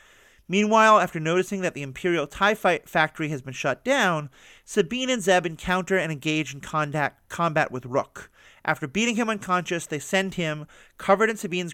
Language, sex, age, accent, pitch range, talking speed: English, male, 40-59, American, 145-195 Hz, 165 wpm